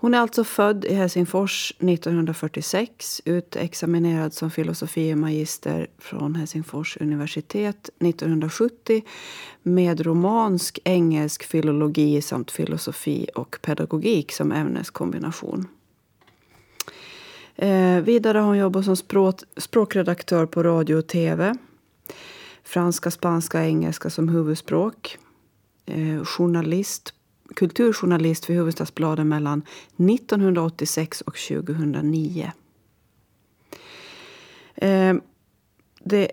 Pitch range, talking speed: 155-195 Hz, 90 wpm